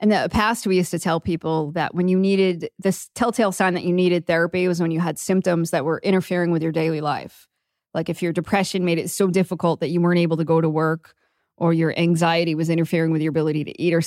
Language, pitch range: English, 165-195 Hz